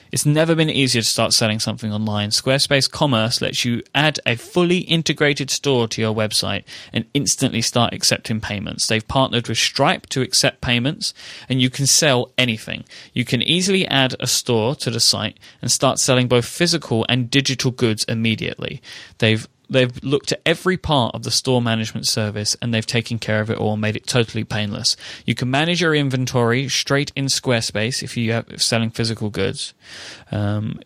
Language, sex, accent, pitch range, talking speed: English, male, British, 115-140 Hz, 180 wpm